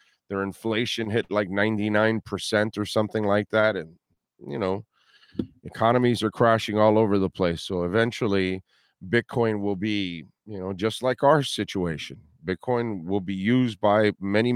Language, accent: English, American